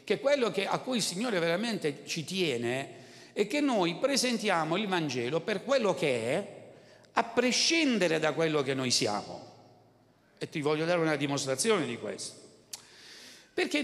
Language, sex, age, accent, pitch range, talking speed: Italian, male, 60-79, native, 130-195 Hz, 150 wpm